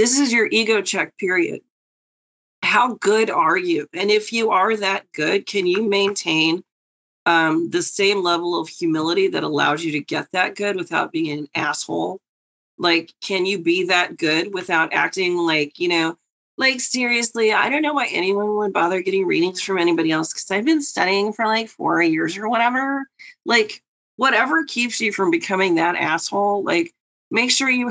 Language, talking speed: English, 180 wpm